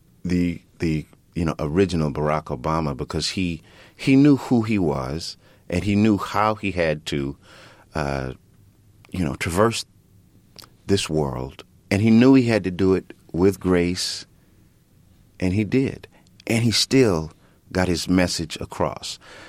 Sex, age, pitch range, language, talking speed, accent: male, 40-59, 75-105 Hz, English, 145 wpm, American